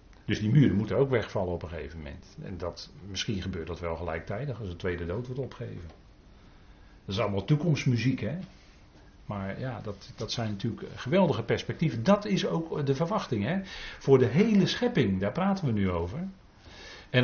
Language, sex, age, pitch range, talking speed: Dutch, male, 40-59, 110-170 Hz, 180 wpm